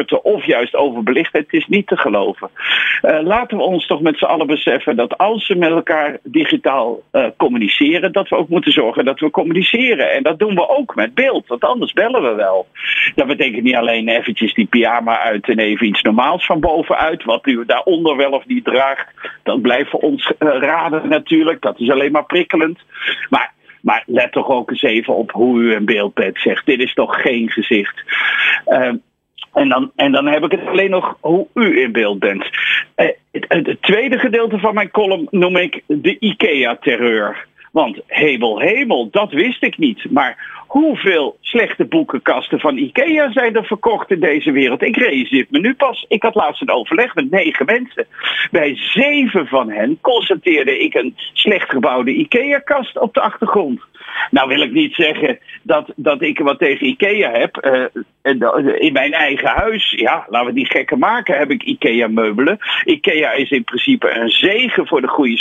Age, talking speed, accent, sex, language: 50-69, 190 wpm, Dutch, male, Dutch